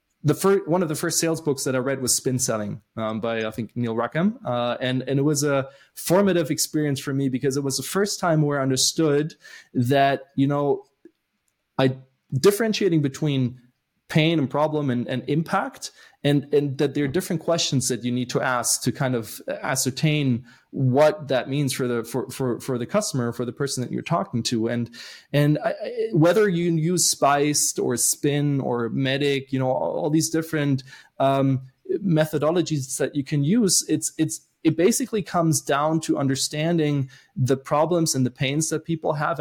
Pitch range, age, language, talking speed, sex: 130-160 Hz, 20-39, English, 185 wpm, male